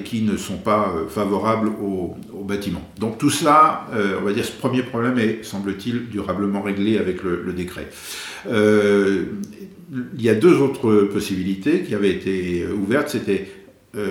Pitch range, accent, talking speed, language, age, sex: 95-115 Hz, French, 160 wpm, French, 50-69, male